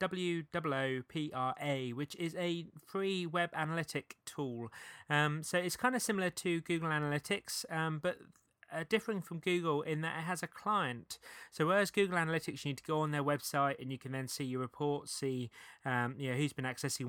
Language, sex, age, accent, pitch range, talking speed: English, male, 20-39, British, 130-165 Hz, 200 wpm